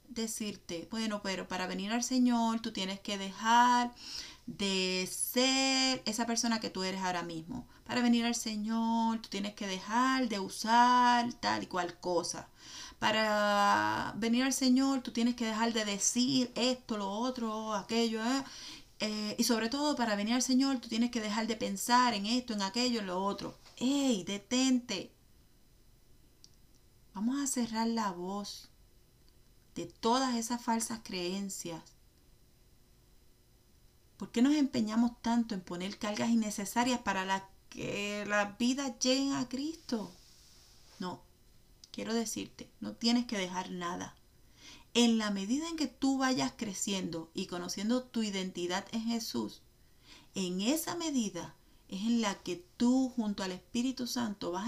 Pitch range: 195-245 Hz